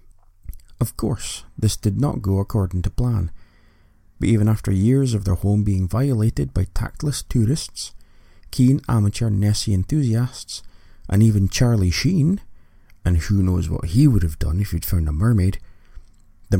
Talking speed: 155 wpm